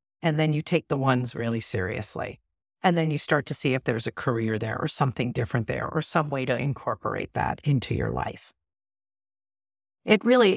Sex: female